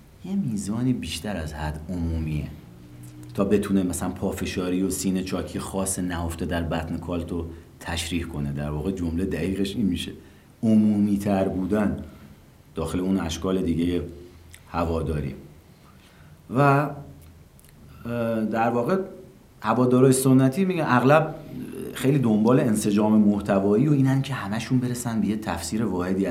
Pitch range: 85-110 Hz